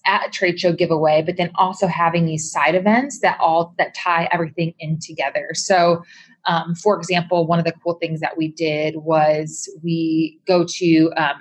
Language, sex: English, female